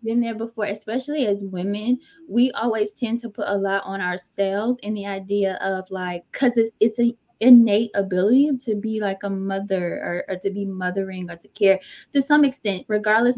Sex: female